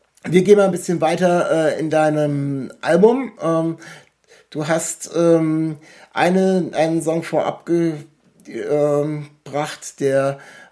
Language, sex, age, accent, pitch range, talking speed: German, male, 60-79, German, 145-170 Hz, 110 wpm